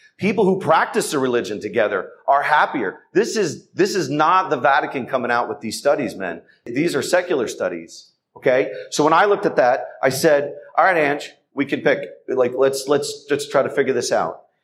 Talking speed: 200 wpm